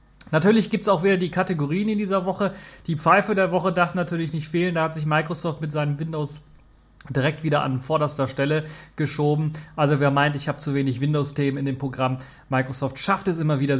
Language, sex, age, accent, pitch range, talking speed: German, male, 30-49, German, 130-160 Hz, 205 wpm